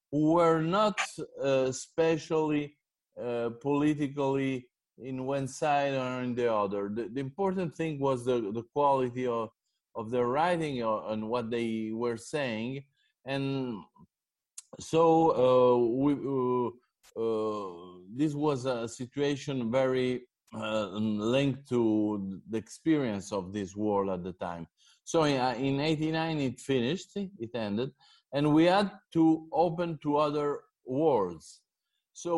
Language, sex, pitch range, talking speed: Turkish, male, 125-155 Hz, 130 wpm